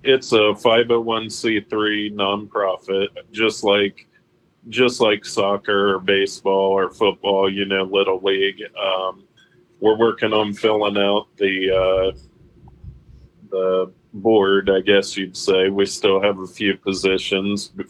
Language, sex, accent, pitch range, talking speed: English, male, American, 95-105 Hz, 125 wpm